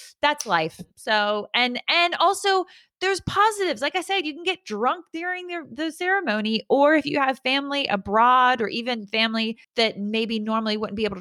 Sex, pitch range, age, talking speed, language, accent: female, 180-250 Hz, 20-39, 180 wpm, English, American